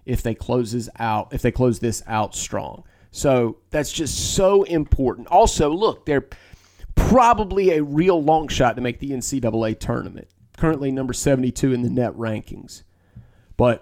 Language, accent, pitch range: English, American, 110-145 Hz